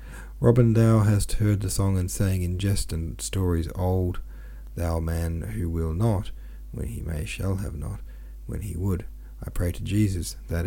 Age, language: 40-59, English